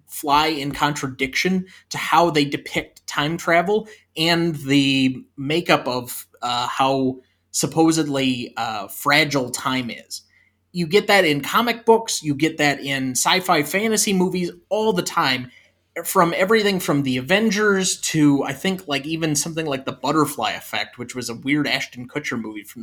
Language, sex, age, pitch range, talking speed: English, male, 20-39, 130-170 Hz, 155 wpm